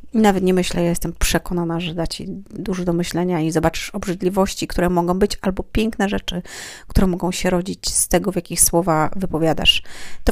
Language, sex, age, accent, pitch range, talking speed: Polish, female, 30-49, native, 175-195 Hz, 190 wpm